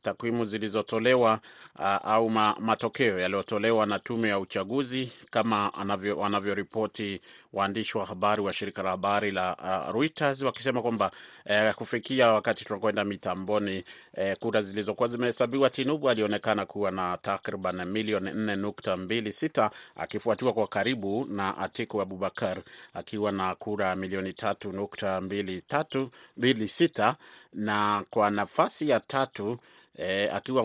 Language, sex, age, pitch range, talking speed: Swahili, male, 30-49, 100-120 Hz, 125 wpm